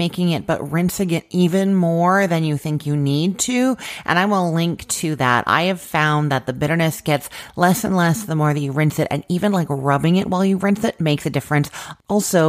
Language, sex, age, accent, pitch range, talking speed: English, female, 40-59, American, 140-180 Hz, 230 wpm